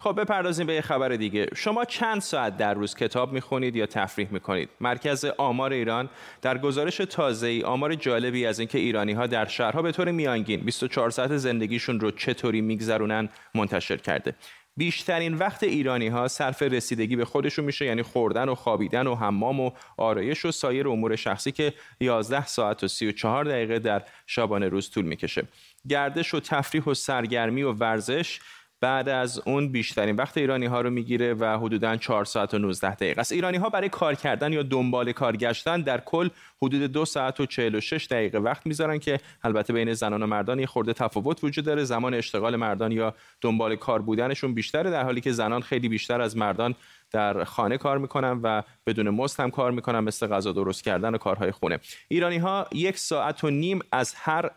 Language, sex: Persian, male